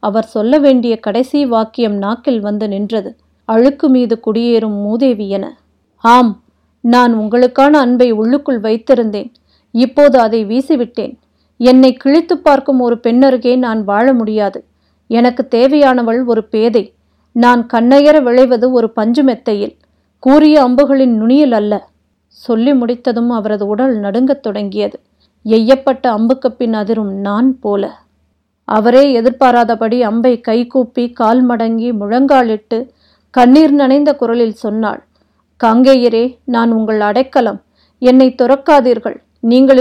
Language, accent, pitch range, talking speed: Tamil, native, 225-265 Hz, 110 wpm